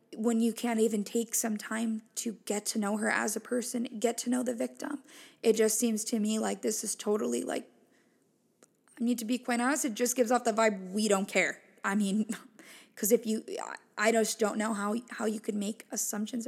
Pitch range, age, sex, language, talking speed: 215-245 Hz, 20-39, female, English, 220 wpm